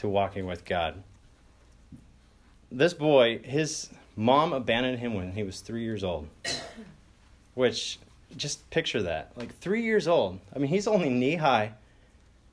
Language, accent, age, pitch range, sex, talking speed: English, American, 30-49, 100-140 Hz, male, 140 wpm